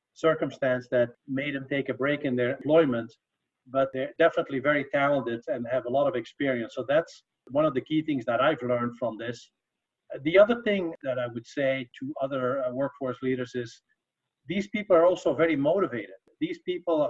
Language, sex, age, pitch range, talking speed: English, male, 50-69, 130-170 Hz, 185 wpm